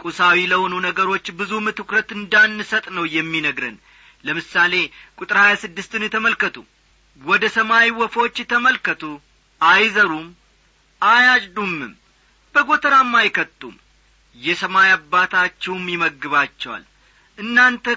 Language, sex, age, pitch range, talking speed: Amharic, male, 40-59, 180-235 Hz, 80 wpm